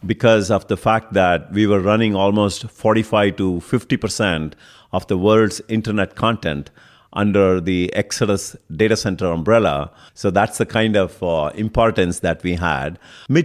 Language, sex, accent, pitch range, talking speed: English, male, Indian, 90-115 Hz, 155 wpm